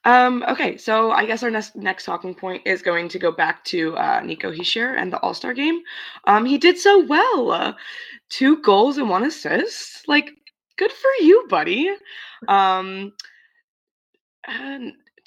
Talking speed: 160 wpm